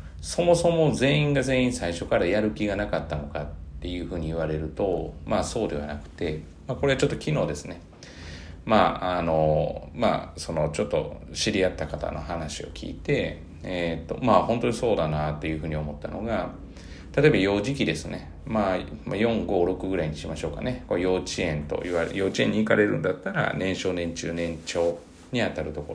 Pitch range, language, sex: 75-100 Hz, Japanese, male